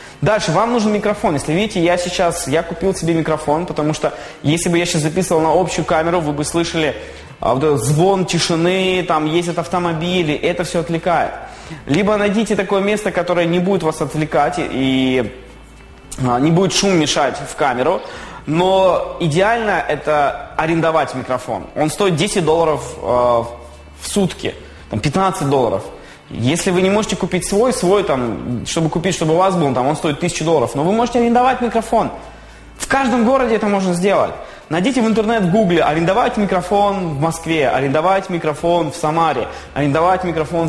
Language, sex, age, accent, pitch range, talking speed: Russian, male, 20-39, native, 155-195 Hz, 155 wpm